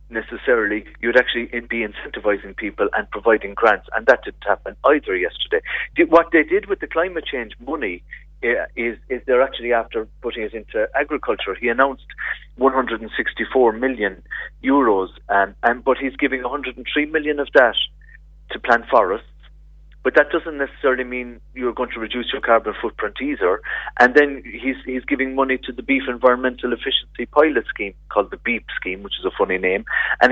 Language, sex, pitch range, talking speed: English, male, 115-145 Hz, 170 wpm